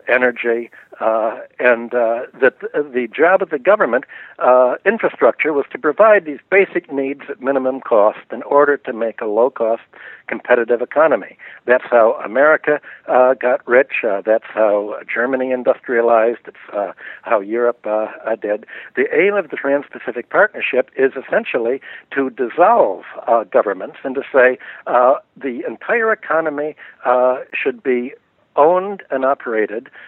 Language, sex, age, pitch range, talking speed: English, male, 60-79, 120-150 Hz, 145 wpm